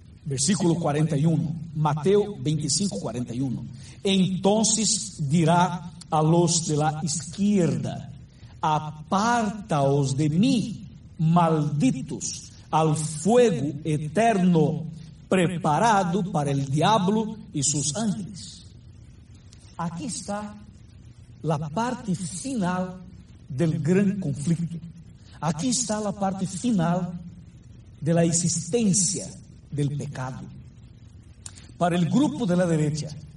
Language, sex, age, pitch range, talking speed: Spanish, male, 60-79, 135-175 Hz, 90 wpm